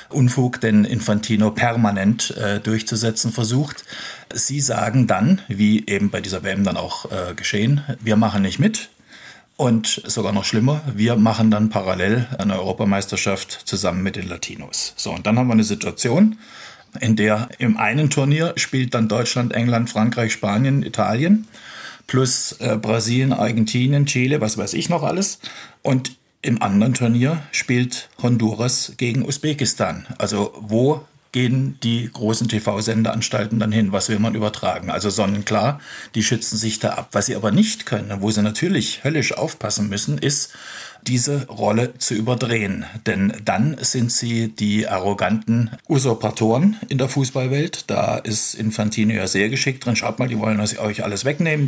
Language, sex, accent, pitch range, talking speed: German, male, German, 105-130 Hz, 155 wpm